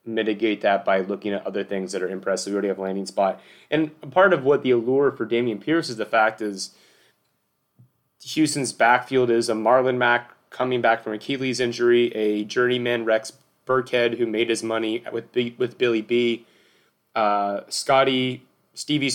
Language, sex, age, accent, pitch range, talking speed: English, male, 30-49, American, 115-135 Hz, 175 wpm